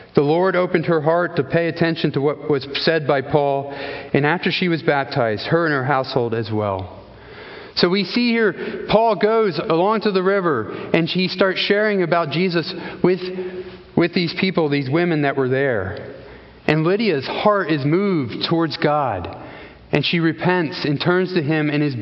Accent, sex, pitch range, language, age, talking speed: American, male, 140-180 Hz, English, 40-59, 180 wpm